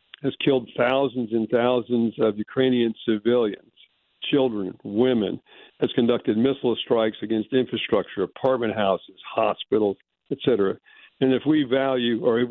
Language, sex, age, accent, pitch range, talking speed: English, male, 50-69, American, 115-140 Hz, 125 wpm